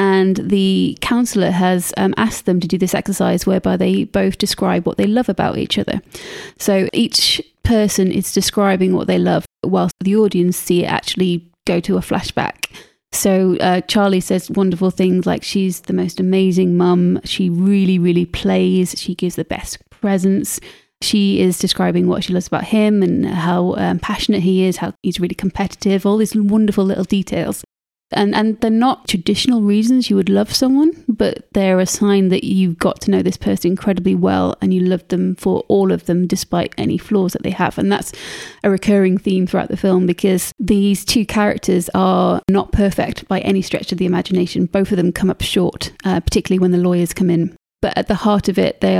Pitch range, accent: 180-200 Hz, British